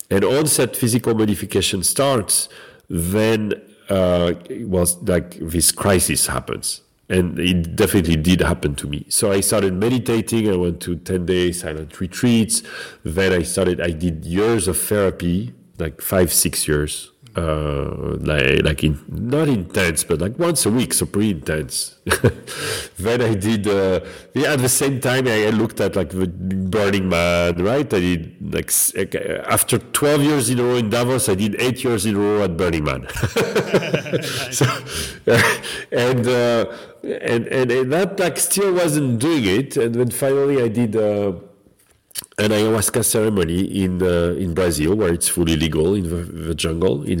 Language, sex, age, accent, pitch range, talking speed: English, male, 50-69, French, 85-115 Hz, 165 wpm